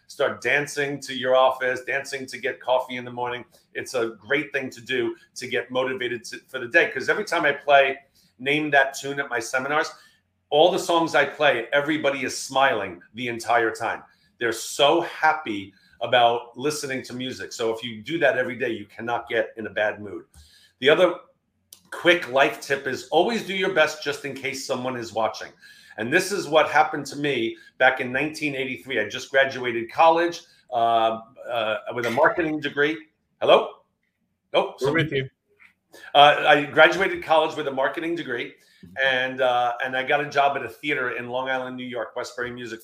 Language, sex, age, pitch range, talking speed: English, male, 40-59, 125-150 Hz, 185 wpm